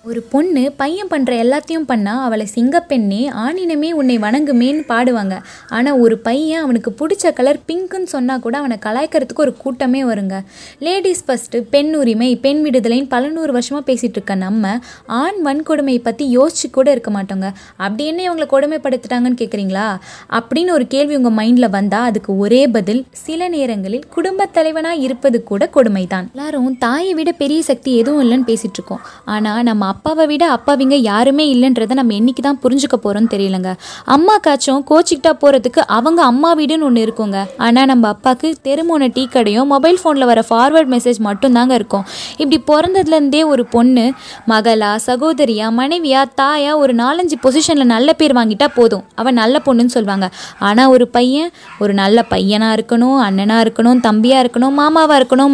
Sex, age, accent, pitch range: female, 20-39, native, 230-290 Hz